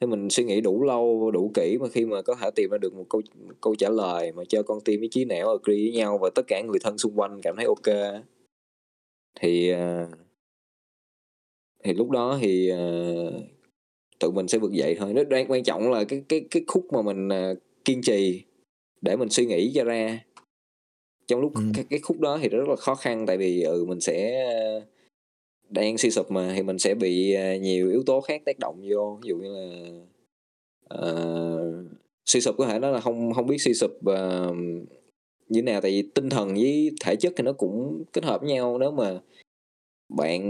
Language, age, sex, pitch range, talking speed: Vietnamese, 20-39, male, 90-125 Hz, 205 wpm